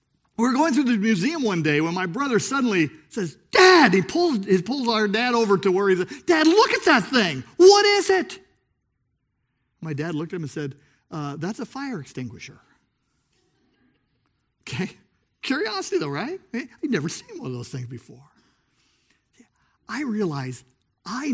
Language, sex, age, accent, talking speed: English, male, 50-69, American, 170 wpm